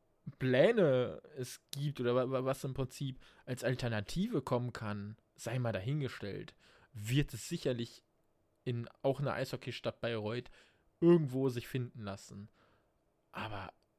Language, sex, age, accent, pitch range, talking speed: German, male, 20-39, German, 115-130 Hz, 115 wpm